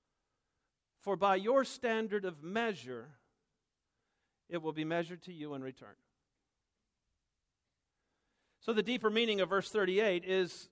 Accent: American